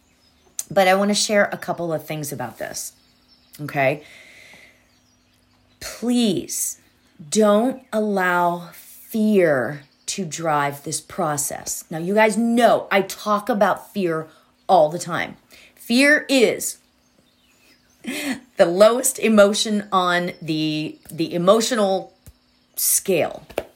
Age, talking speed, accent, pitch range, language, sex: 30-49, 105 wpm, American, 165-230 Hz, English, female